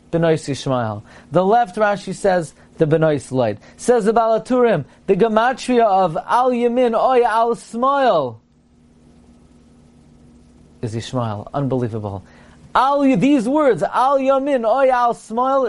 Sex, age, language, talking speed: male, 30-49, English, 115 wpm